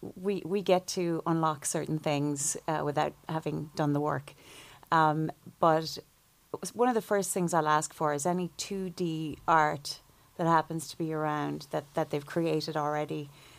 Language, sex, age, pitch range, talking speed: English, female, 30-49, 155-185 Hz, 165 wpm